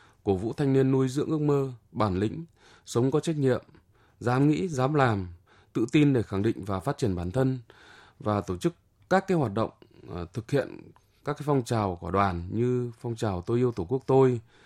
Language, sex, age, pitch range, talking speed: Vietnamese, male, 20-39, 105-145 Hz, 210 wpm